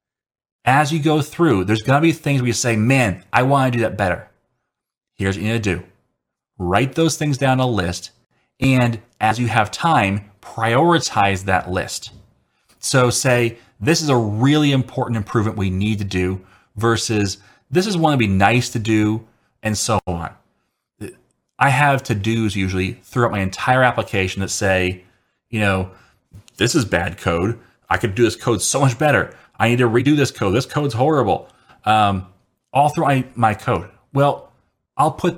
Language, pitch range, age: English, 100-130 Hz, 30-49